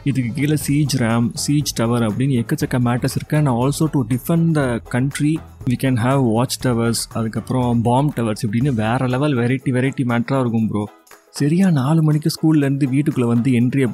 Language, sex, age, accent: Tamil, male, 30-49, native